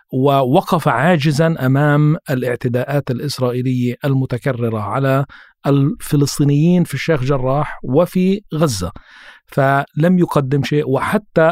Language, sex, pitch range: Arabic, male, 125-150 Hz